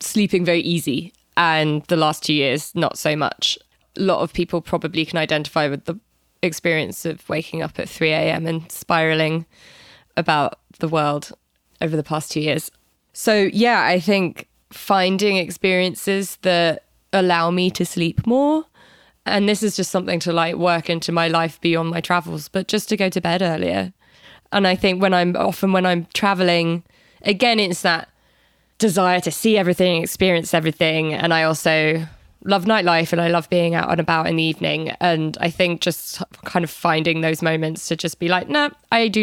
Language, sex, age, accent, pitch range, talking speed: English, female, 20-39, British, 160-185 Hz, 180 wpm